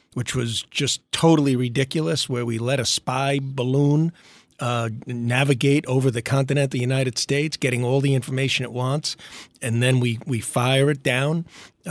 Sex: male